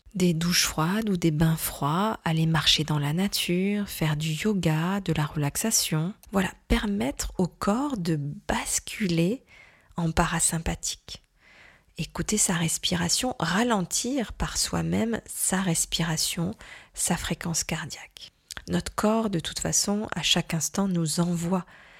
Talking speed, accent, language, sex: 130 wpm, French, French, female